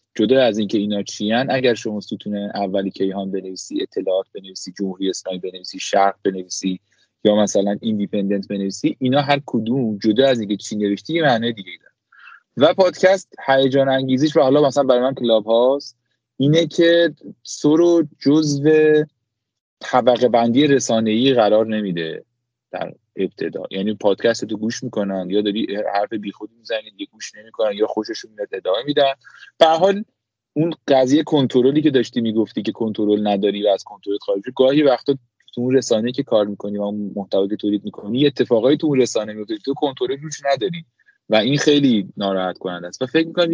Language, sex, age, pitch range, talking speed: Persian, male, 30-49, 105-145 Hz, 165 wpm